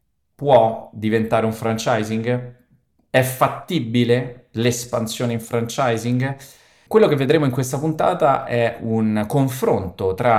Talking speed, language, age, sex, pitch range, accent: 110 wpm, Italian, 20-39, male, 100-125 Hz, native